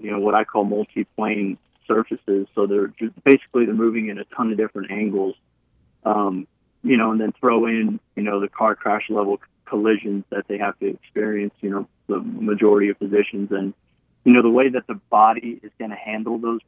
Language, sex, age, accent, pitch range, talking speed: English, male, 30-49, American, 100-115 Hz, 205 wpm